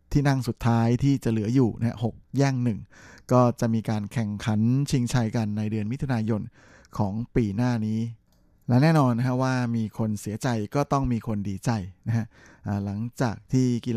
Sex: male